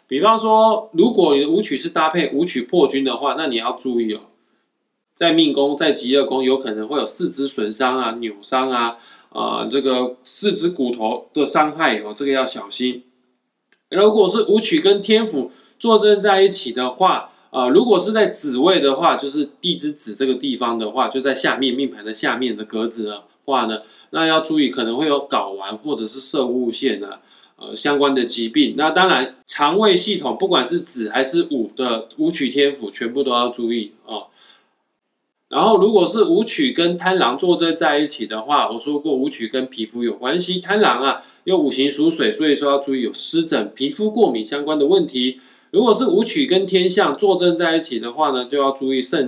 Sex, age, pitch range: male, 20-39, 120-170 Hz